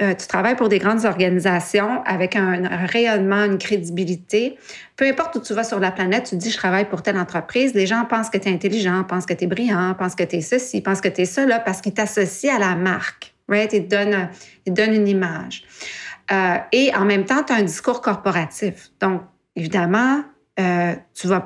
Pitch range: 185-225 Hz